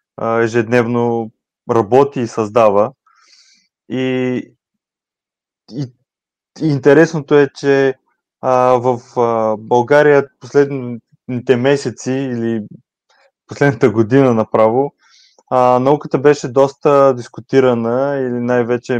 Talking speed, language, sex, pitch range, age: 80 wpm, Bulgarian, male, 115-135 Hz, 20-39